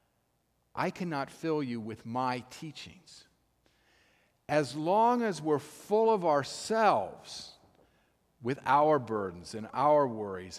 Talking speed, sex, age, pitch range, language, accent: 115 wpm, male, 50-69, 120-155 Hz, English, American